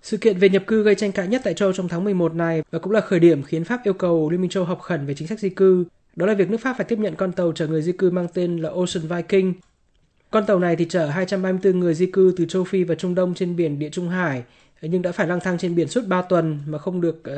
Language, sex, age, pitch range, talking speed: Vietnamese, male, 20-39, 165-195 Hz, 295 wpm